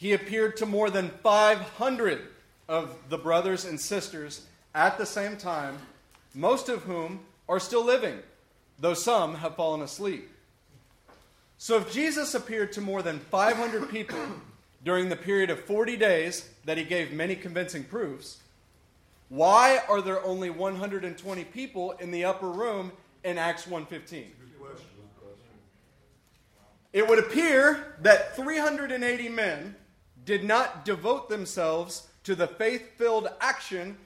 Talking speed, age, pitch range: 130 wpm, 30-49, 160-215 Hz